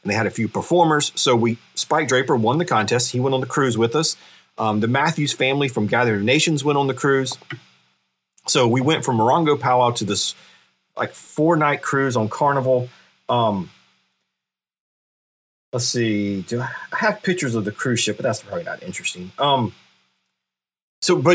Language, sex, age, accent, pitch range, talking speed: English, male, 40-59, American, 110-150 Hz, 180 wpm